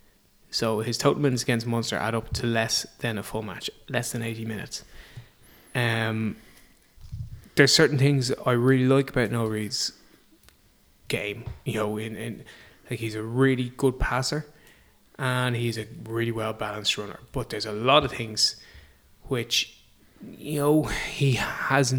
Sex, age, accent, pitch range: male, 20-39, Irish, 115-130 Hz